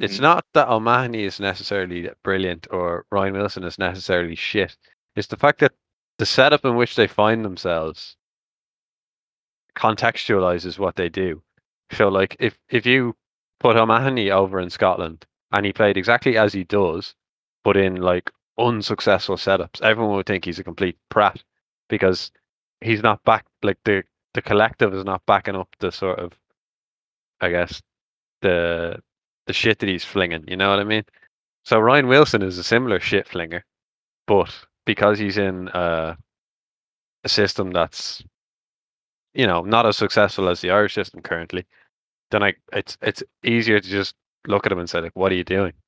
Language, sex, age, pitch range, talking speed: English, male, 20-39, 90-110 Hz, 165 wpm